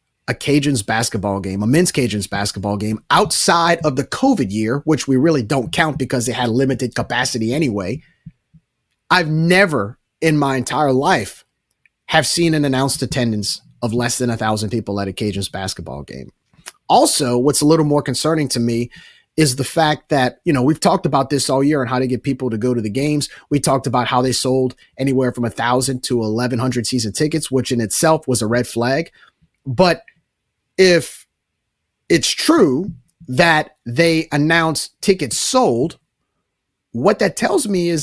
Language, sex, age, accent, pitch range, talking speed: English, male, 30-49, American, 120-160 Hz, 175 wpm